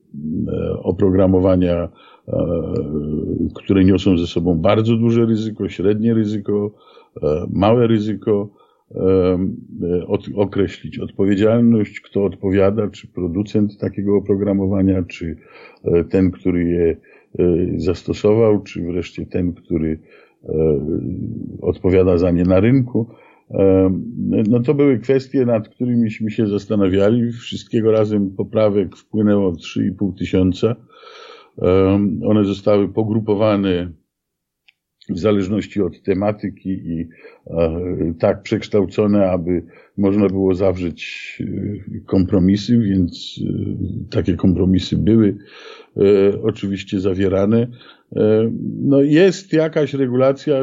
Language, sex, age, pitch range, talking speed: Polish, male, 50-69, 95-125 Hz, 85 wpm